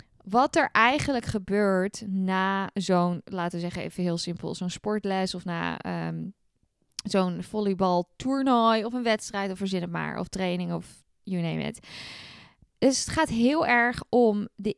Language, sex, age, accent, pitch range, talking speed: Dutch, female, 10-29, Dutch, 185-215 Hz, 160 wpm